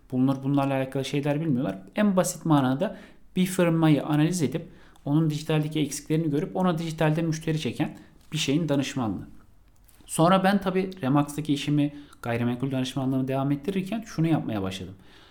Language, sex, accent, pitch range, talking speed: Turkish, male, native, 120-155 Hz, 135 wpm